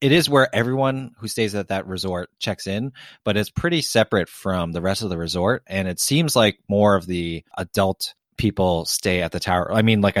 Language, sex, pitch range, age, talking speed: English, male, 90-115 Hz, 30-49, 220 wpm